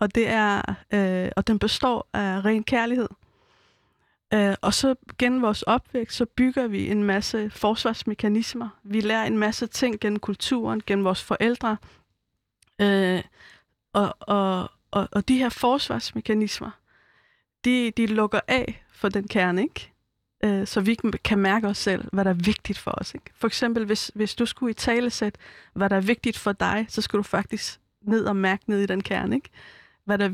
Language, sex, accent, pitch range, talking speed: Danish, female, native, 200-230 Hz, 180 wpm